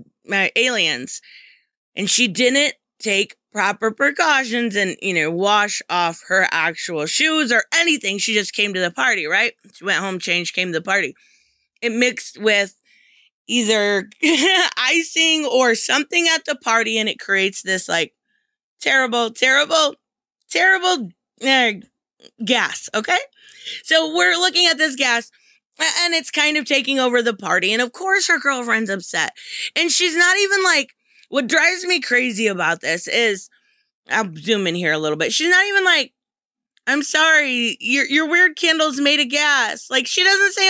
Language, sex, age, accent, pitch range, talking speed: English, female, 20-39, American, 215-325 Hz, 160 wpm